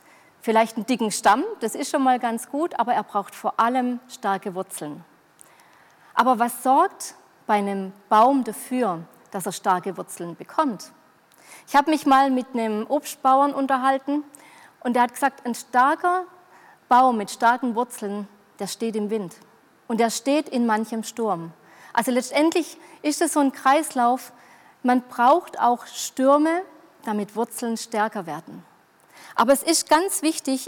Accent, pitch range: German, 215-285 Hz